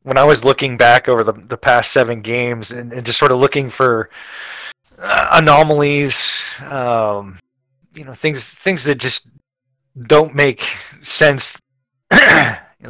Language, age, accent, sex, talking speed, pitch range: English, 30-49, American, male, 140 wpm, 120-140 Hz